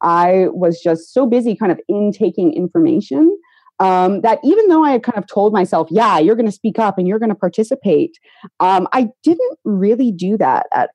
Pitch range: 165-250 Hz